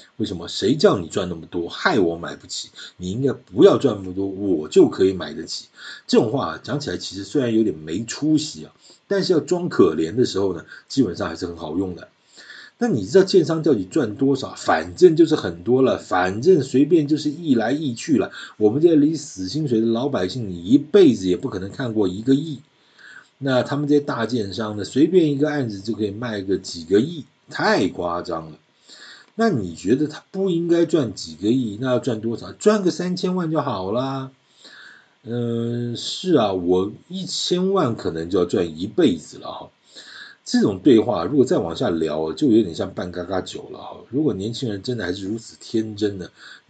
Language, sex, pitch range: Chinese, male, 95-150 Hz